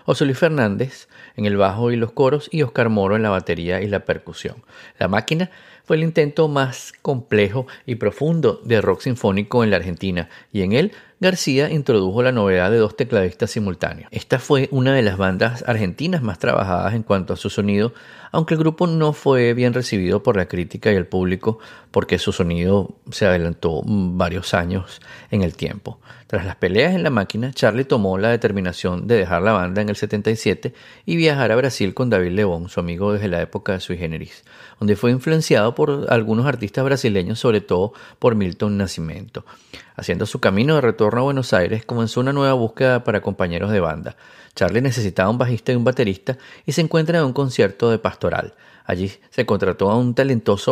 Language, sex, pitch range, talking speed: Spanish, male, 95-130 Hz, 190 wpm